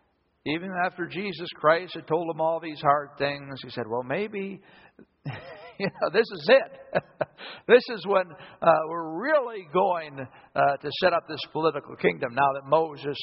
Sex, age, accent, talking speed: male, 60-79, American, 170 wpm